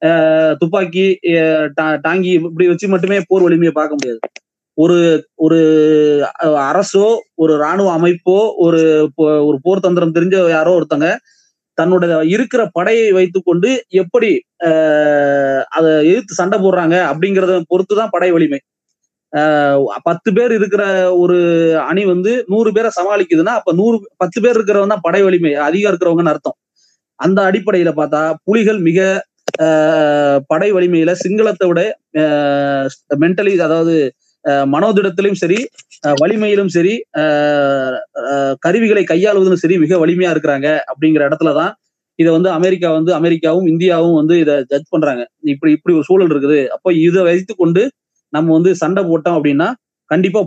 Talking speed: 125 wpm